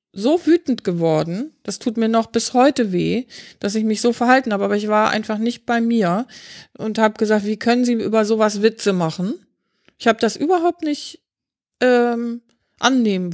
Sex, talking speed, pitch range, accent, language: female, 180 wpm, 210-245 Hz, German, German